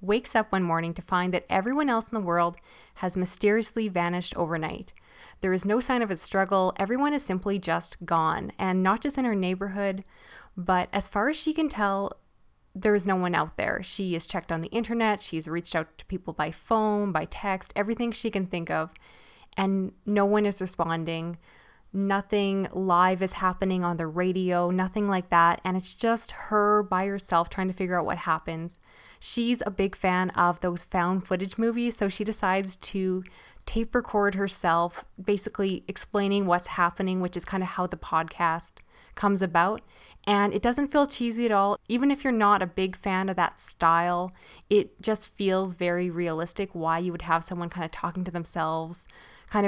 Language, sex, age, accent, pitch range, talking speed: English, female, 10-29, American, 175-205 Hz, 190 wpm